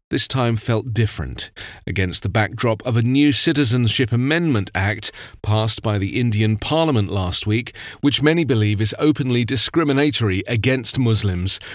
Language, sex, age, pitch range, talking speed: English, male, 40-59, 110-140 Hz, 145 wpm